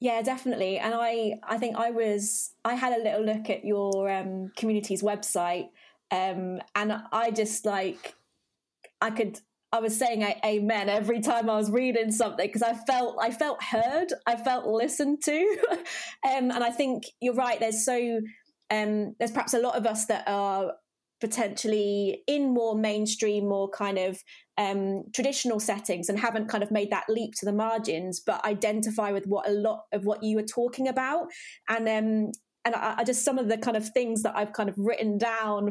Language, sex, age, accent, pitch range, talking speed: English, female, 20-39, British, 210-255 Hz, 185 wpm